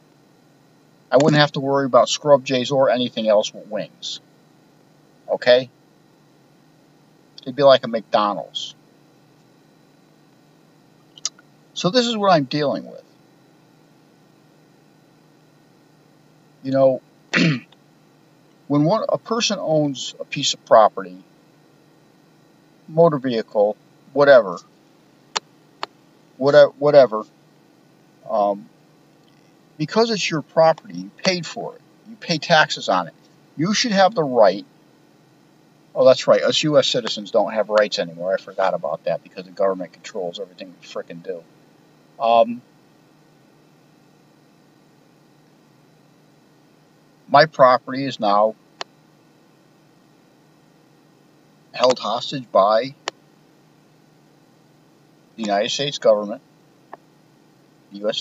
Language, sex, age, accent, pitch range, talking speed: English, male, 50-69, American, 140-155 Hz, 100 wpm